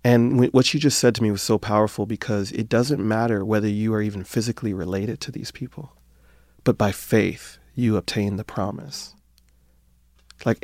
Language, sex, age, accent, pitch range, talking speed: English, male, 30-49, American, 95-115 Hz, 175 wpm